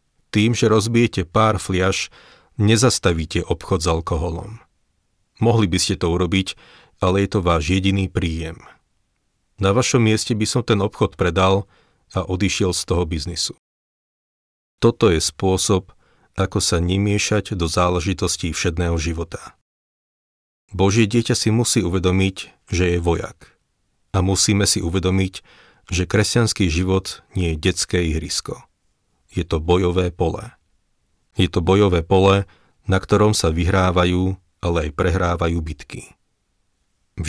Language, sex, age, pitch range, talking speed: Slovak, male, 40-59, 85-105 Hz, 125 wpm